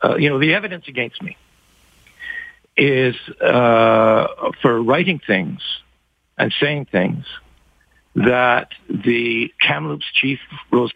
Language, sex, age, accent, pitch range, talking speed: English, male, 60-79, American, 115-160 Hz, 110 wpm